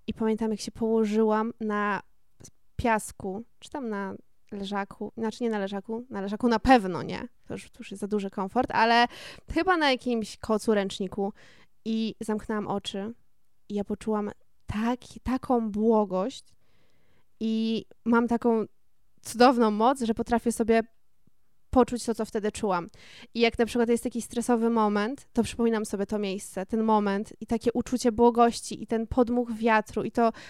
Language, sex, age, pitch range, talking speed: Polish, female, 20-39, 210-235 Hz, 155 wpm